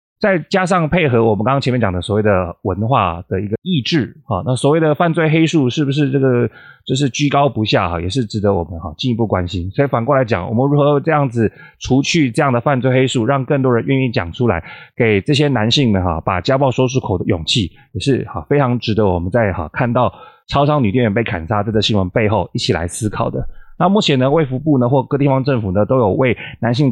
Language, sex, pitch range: Chinese, male, 105-135 Hz